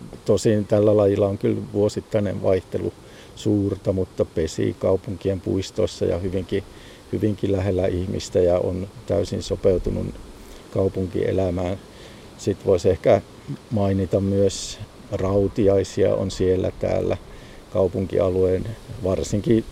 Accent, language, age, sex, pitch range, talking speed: native, Finnish, 50-69, male, 90-100 Hz, 100 wpm